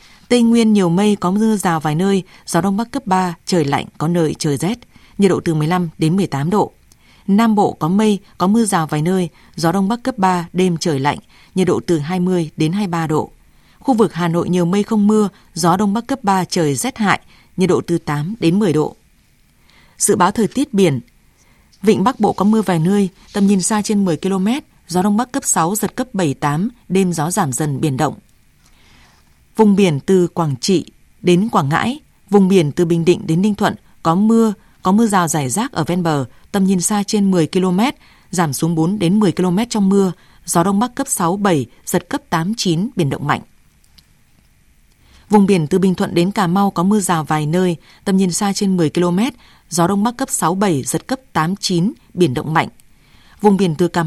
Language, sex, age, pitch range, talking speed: Vietnamese, female, 20-39, 170-205 Hz, 220 wpm